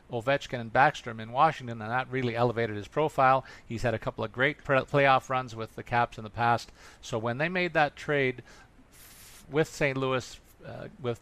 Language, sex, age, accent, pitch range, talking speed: English, male, 50-69, American, 115-140 Hz, 195 wpm